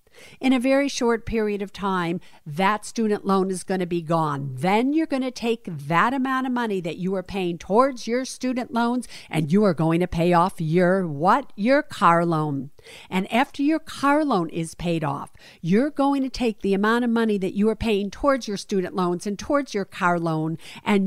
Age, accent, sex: 50-69, American, female